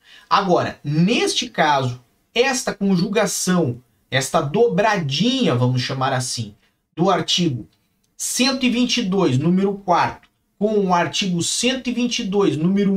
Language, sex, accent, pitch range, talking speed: Portuguese, male, Brazilian, 130-195 Hz, 95 wpm